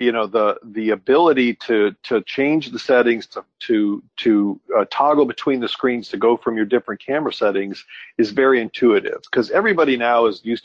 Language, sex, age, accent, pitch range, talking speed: English, male, 50-69, American, 110-135 Hz, 185 wpm